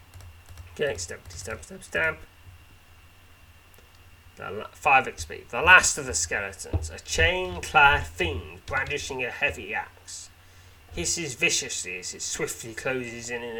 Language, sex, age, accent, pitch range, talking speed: English, male, 30-49, British, 85-95 Hz, 120 wpm